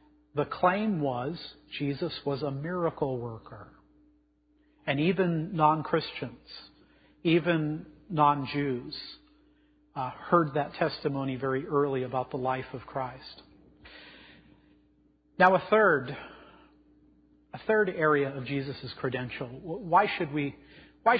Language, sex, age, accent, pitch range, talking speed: English, male, 40-59, American, 140-180 Hz, 100 wpm